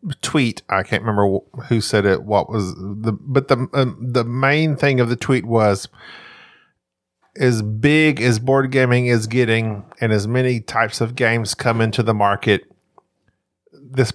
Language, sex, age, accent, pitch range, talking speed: English, male, 40-59, American, 110-140 Hz, 160 wpm